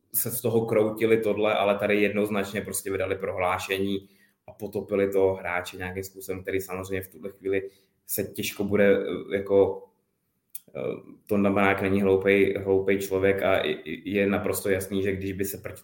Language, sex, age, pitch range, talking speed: Czech, male, 20-39, 95-100 Hz, 155 wpm